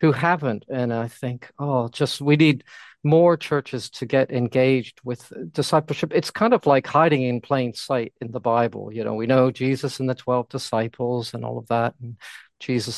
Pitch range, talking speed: 125-145 Hz, 195 wpm